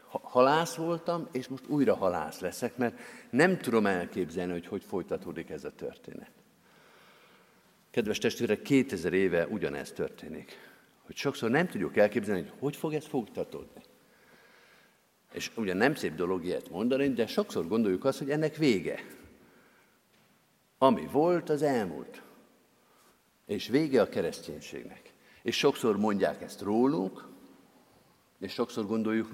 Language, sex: Hungarian, male